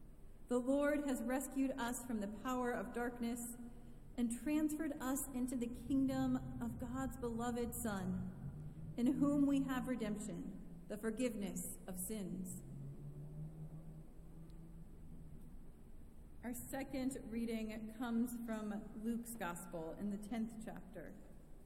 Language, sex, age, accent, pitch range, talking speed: English, female, 40-59, American, 205-260 Hz, 110 wpm